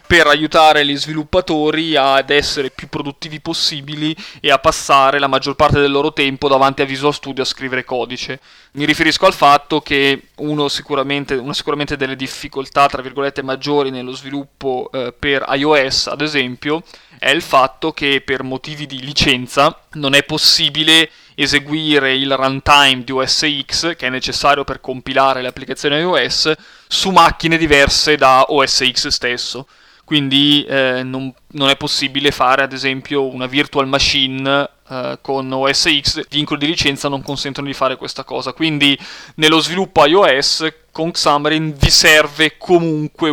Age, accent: 20-39, native